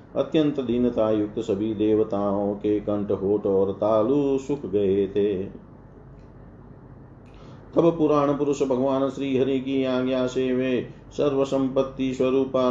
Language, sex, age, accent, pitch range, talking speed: Hindi, male, 40-59, native, 110-130 Hz, 120 wpm